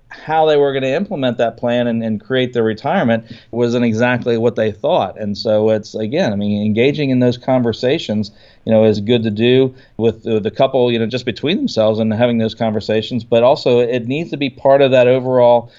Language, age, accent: English, 40-59, American